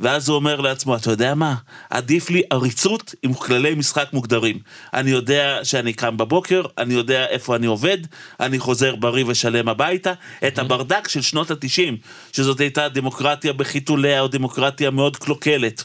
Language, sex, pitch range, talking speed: Hebrew, male, 125-160 Hz, 160 wpm